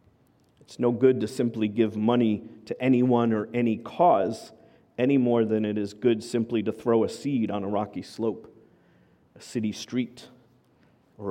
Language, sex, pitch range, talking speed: English, male, 105-130 Hz, 165 wpm